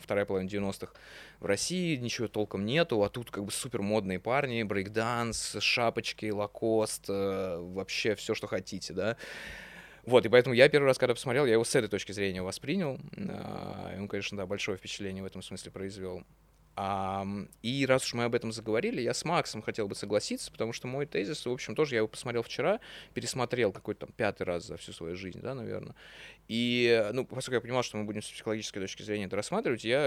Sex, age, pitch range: male, 20-39, 100-125 Hz